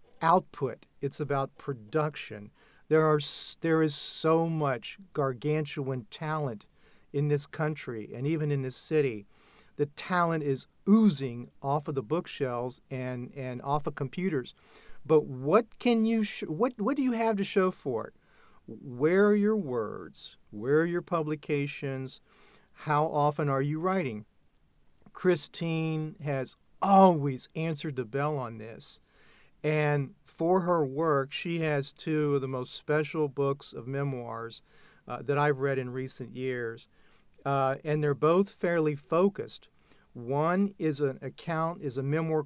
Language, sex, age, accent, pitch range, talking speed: English, male, 50-69, American, 135-160 Hz, 145 wpm